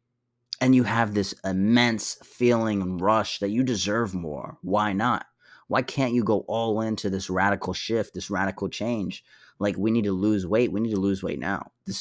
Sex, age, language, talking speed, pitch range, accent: male, 20-39, English, 195 wpm, 100-120 Hz, American